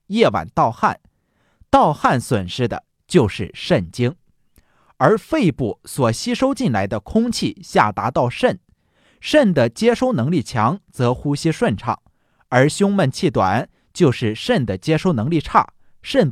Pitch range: 115-175 Hz